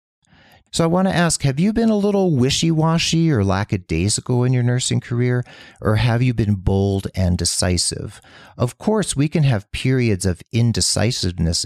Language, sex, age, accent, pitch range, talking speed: English, male, 40-59, American, 90-120 Hz, 165 wpm